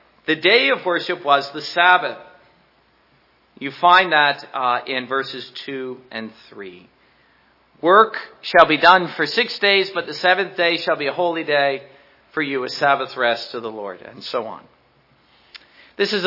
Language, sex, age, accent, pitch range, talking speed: English, male, 50-69, American, 145-195 Hz, 165 wpm